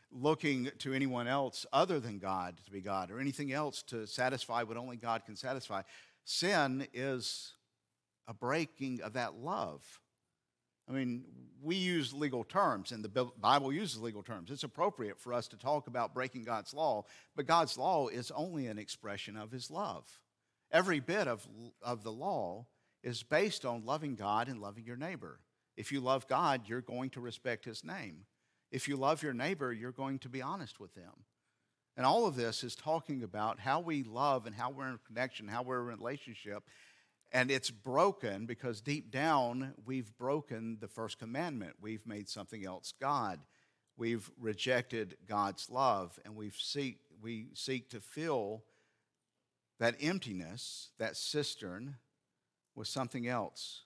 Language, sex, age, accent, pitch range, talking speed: English, male, 50-69, American, 110-135 Hz, 165 wpm